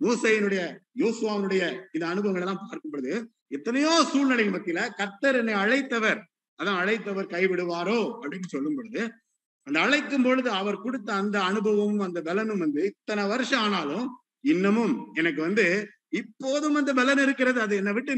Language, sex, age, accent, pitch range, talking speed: Tamil, male, 50-69, native, 185-255 Hz, 120 wpm